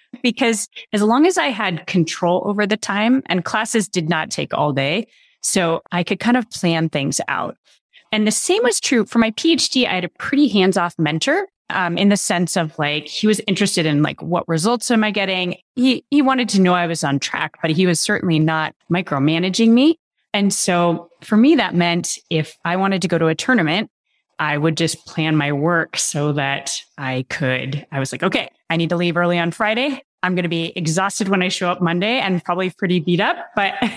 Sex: female